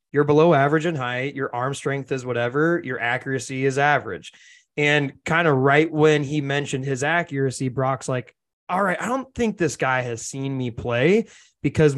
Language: English